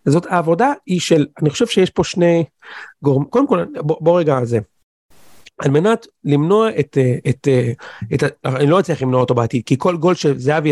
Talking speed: 185 wpm